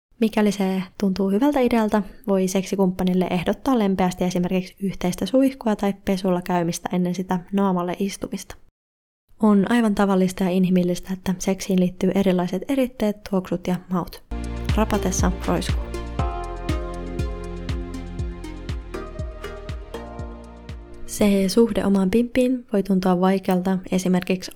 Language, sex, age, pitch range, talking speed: Finnish, female, 20-39, 180-205 Hz, 105 wpm